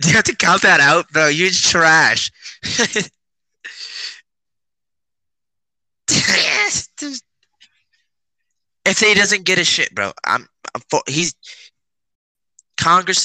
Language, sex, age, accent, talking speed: English, male, 20-39, American, 100 wpm